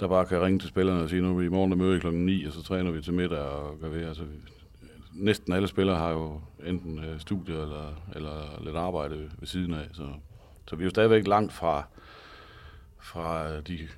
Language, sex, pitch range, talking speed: Danish, male, 80-95 Hz, 210 wpm